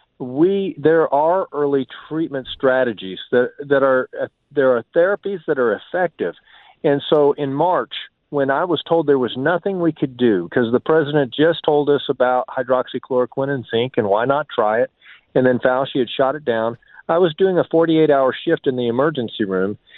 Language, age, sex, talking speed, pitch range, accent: English, 40-59, male, 190 wpm, 125-155 Hz, American